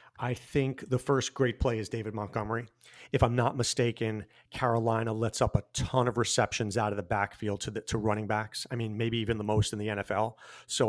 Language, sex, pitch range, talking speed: English, male, 115-140 Hz, 215 wpm